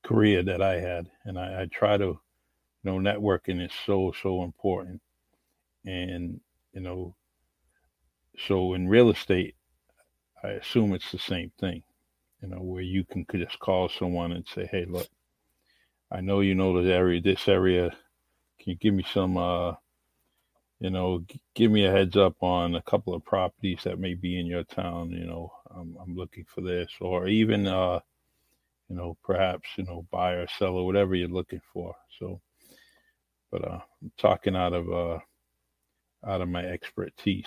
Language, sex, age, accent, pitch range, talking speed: English, male, 50-69, American, 85-95 Hz, 175 wpm